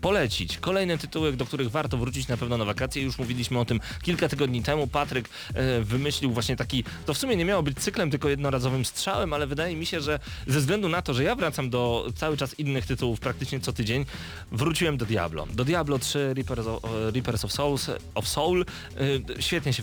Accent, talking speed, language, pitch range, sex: native, 205 wpm, Polish, 115-145 Hz, male